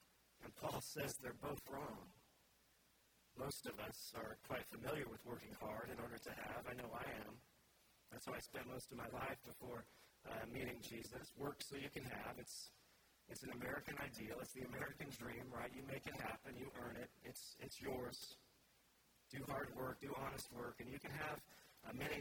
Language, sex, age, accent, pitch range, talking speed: English, male, 40-59, American, 120-135 Hz, 195 wpm